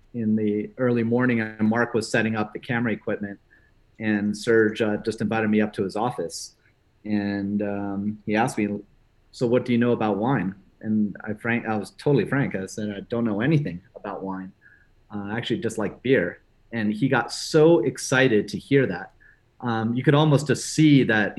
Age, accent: 30-49, American